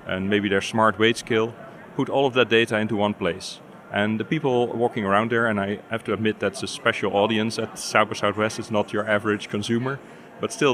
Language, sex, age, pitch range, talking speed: English, male, 30-49, 100-115 Hz, 230 wpm